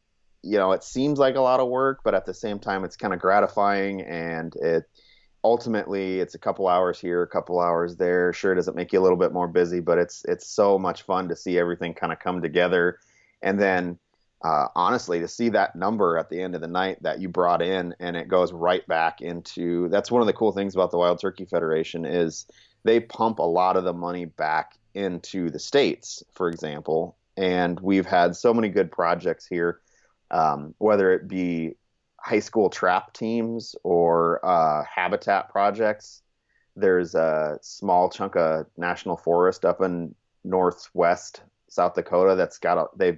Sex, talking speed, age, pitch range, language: male, 190 wpm, 30-49, 85-105 Hz, English